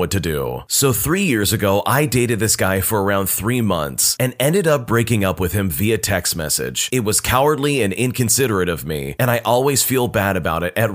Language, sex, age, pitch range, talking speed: English, male, 30-49, 95-135 Hz, 220 wpm